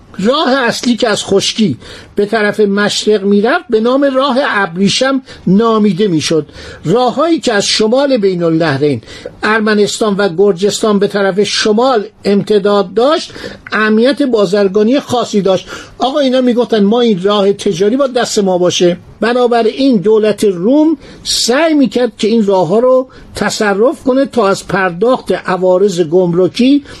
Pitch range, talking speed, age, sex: 185-245 Hz, 135 wpm, 50-69, male